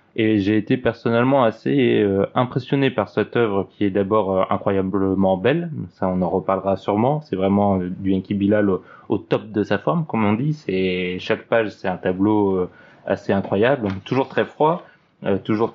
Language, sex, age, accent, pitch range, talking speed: French, male, 20-39, French, 95-110 Hz, 170 wpm